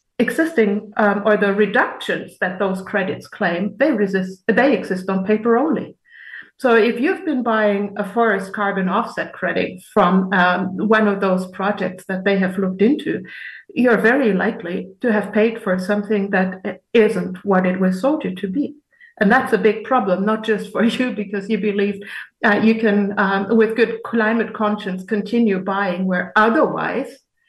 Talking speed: 170 wpm